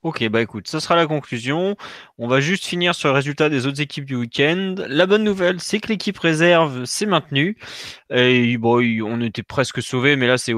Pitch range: 125-160 Hz